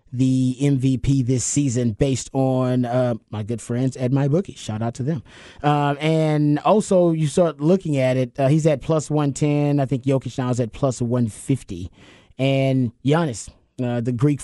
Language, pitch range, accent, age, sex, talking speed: English, 130-155 Hz, American, 30-49, male, 175 wpm